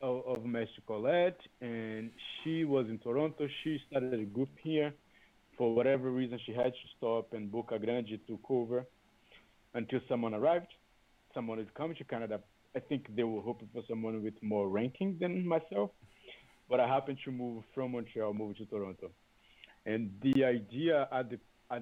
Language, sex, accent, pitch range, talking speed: English, male, Brazilian, 110-130 Hz, 170 wpm